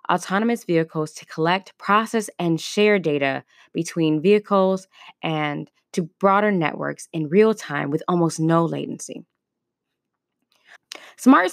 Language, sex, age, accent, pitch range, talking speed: English, female, 10-29, American, 150-205 Hz, 115 wpm